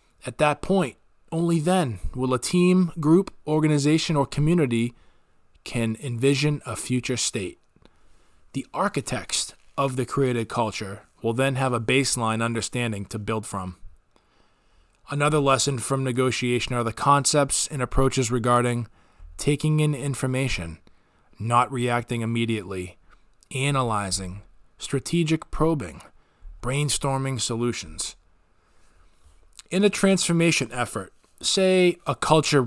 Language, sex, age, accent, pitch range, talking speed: English, male, 20-39, American, 110-145 Hz, 110 wpm